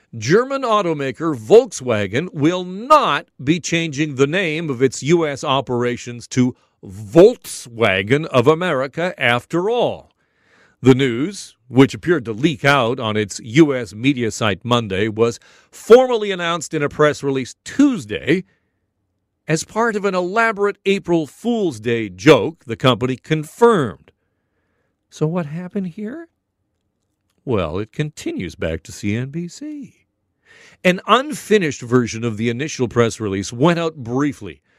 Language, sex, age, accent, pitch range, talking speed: English, male, 50-69, American, 115-185 Hz, 125 wpm